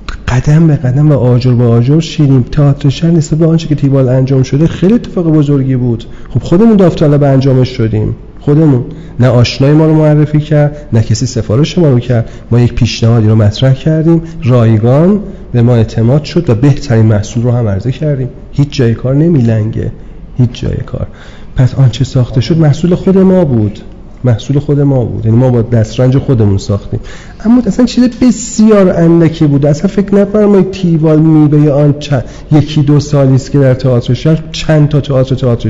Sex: male